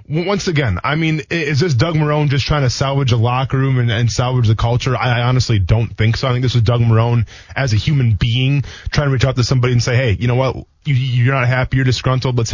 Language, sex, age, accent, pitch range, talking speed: English, male, 20-39, American, 120-150 Hz, 260 wpm